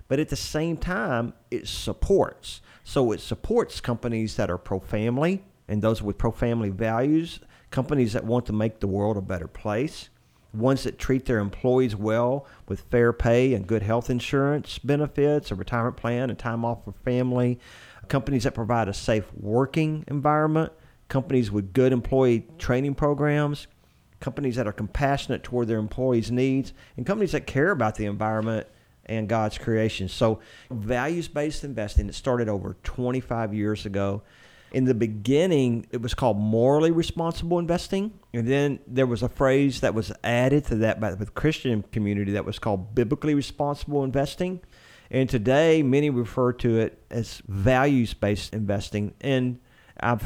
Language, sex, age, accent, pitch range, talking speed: English, male, 40-59, American, 105-135 Hz, 160 wpm